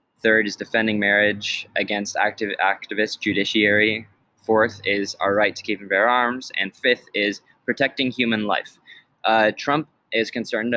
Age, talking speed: 20-39, 150 wpm